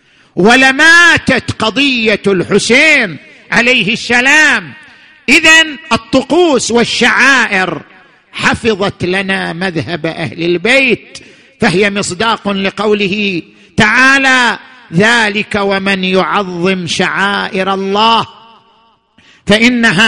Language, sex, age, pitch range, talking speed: Arabic, male, 50-69, 185-240 Hz, 70 wpm